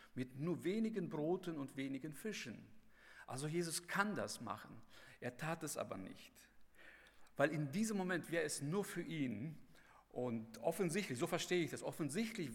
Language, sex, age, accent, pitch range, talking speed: German, male, 50-69, German, 140-190 Hz, 160 wpm